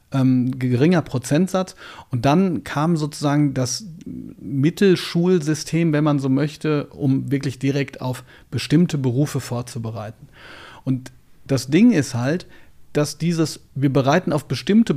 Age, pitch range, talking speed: 40-59, 130-165 Hz, 120 wpm